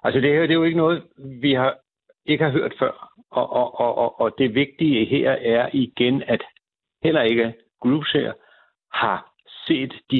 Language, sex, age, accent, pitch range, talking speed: Danish, male, 60-79, native, 110-150 Hz, 180 wpm